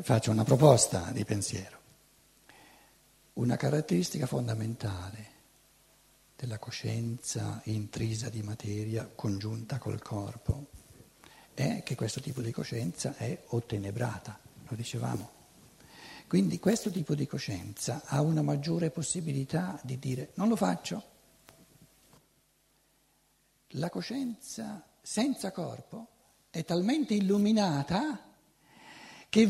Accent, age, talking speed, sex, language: native, 60-79, 100 wpm, male, Italian